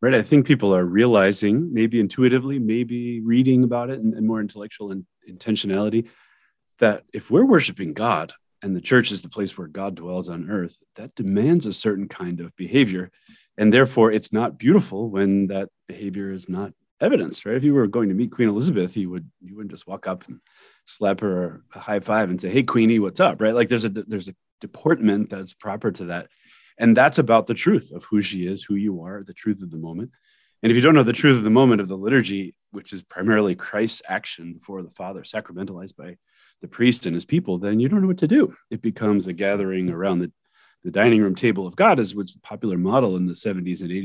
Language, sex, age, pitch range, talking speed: English, male, 30-49, 95-115 Hz, 225 wpm